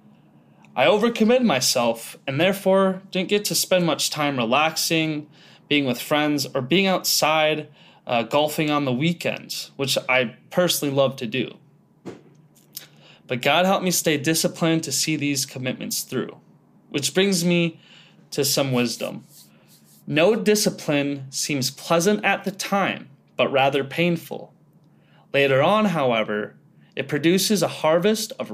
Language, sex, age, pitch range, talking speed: English, male, 20-39, 135-180 Hz, 135 wpm